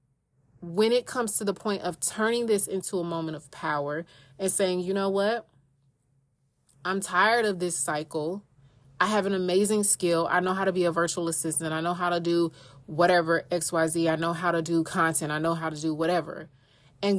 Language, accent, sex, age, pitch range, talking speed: English, American, female, 30-49, 155-180 Hz, 200 wpm